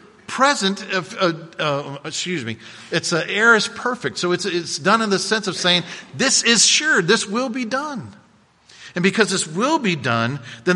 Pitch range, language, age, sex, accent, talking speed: 135-205 Hz, English, 40-59, male, American, 190 wpm